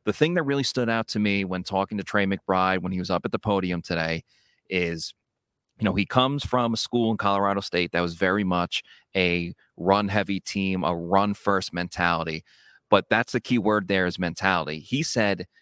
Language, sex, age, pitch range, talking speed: English, male, 30-49, 95-110 Hz, 210 wpm